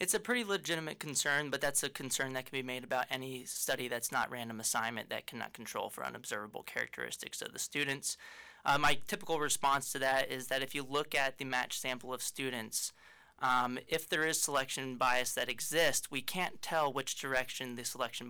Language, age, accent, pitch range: English, 20-39, American, 125-150 Hz